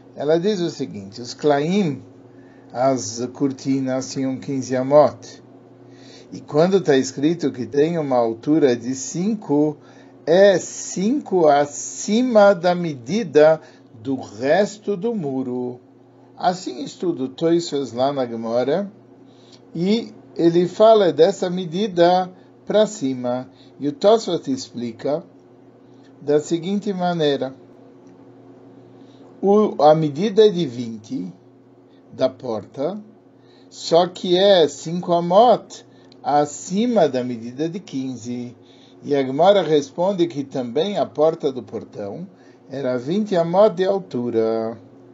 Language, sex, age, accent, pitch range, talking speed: Portuguese, male, 50-69, Brazilian, 125-180 Hz, 110 wpm